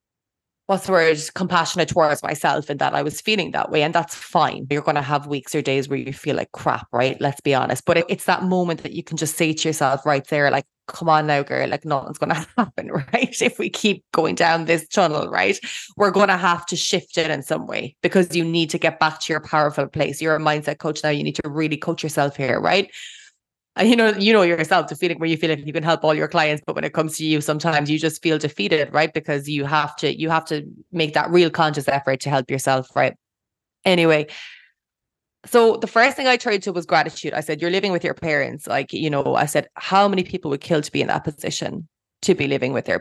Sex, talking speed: female, 245 wpm